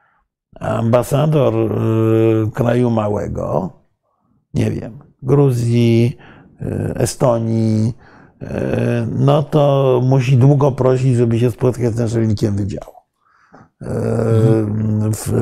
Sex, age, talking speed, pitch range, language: male, 50-69, 90 wpm, 110-135 Hz, Polish